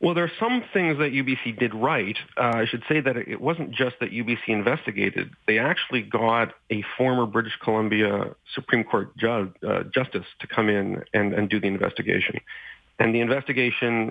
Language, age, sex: English, 40-59, male